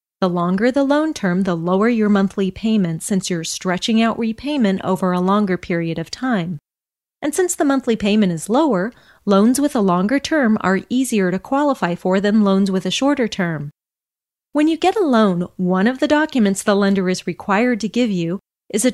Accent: American